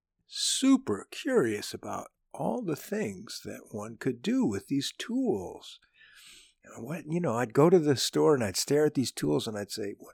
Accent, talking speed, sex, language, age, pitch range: American, 180 wpm, male, English, 60-79, 120-195 Hz